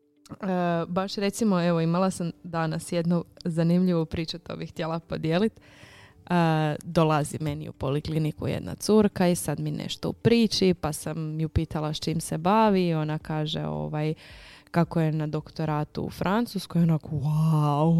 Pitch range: 155-185 Hz